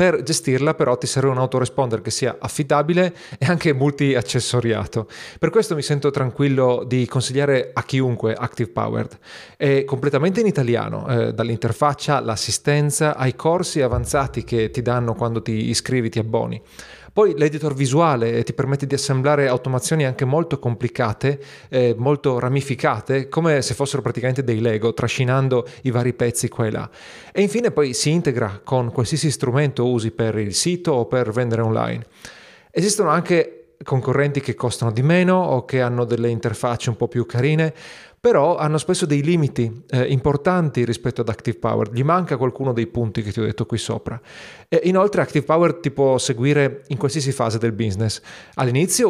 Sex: male